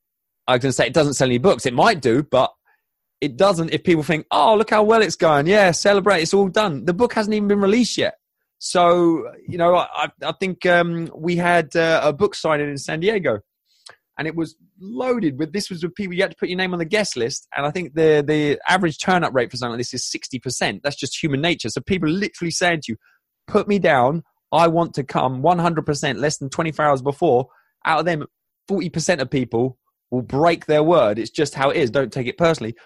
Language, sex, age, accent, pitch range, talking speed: English, male, 20-39, British, 140-195 Hz, 235 wpm